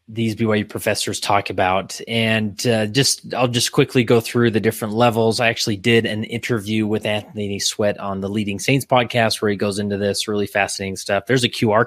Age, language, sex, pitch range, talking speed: 30-49, English, male, 105-125 Hz, 200 wpm